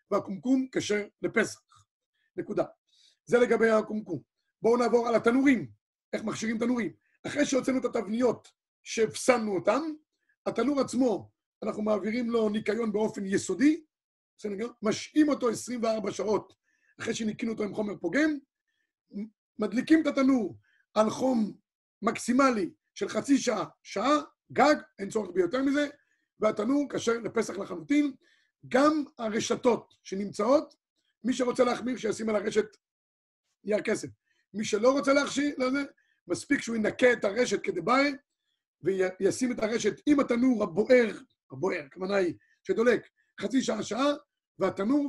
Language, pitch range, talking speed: Hebrew, 215-280 Hz, 120 wpm